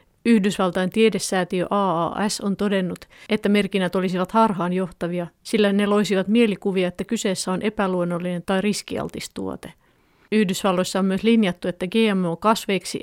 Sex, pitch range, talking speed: female, 180-210 Hz, 120 wpm